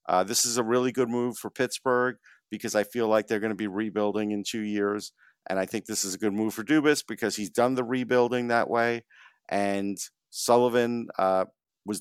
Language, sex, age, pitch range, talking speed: English, male, 50-69, 105-125 Hz, 210 wpm